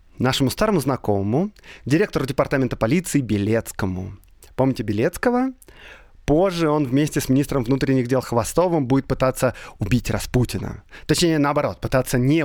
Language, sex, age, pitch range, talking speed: Russian, male, 20-39, 115-155 Hz, 120 wpm